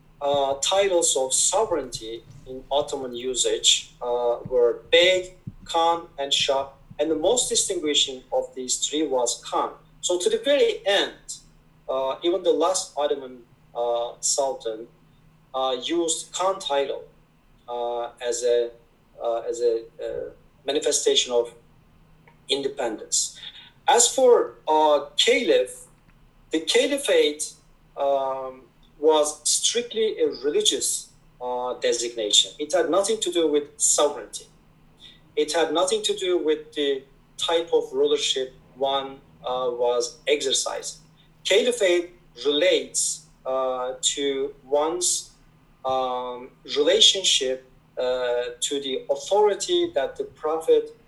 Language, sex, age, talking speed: English, male, 40-59, 115 wpm